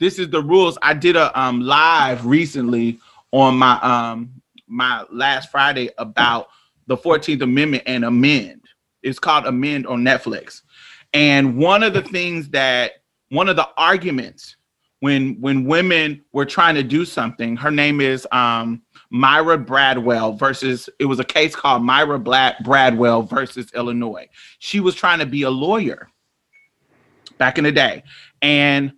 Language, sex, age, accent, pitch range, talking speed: English, male, 30-49, American, 130-170 Hz, 155 wpm